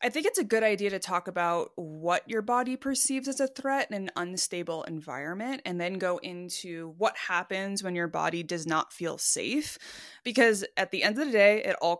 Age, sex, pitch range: 20-39, female, 170-225 Hz